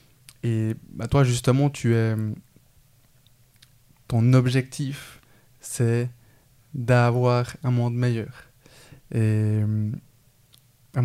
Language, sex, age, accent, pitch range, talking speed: French, male, 20-39, French, 115-135 Hz, 70 wpm